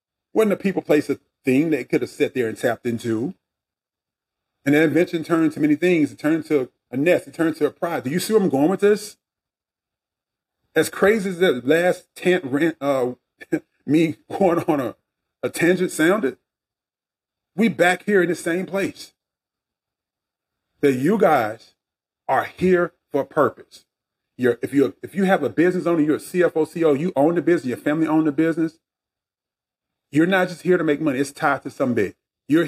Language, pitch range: English, 135-180 Hz